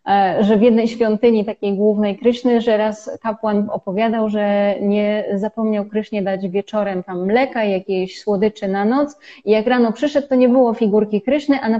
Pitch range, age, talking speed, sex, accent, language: 210-255 Hz, 20-39, 175 wpm, female, native, Polish